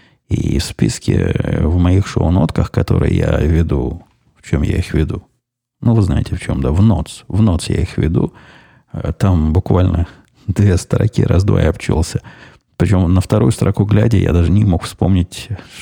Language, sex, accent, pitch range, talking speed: Russian, male, native, 85-115 Hz, 165 wpm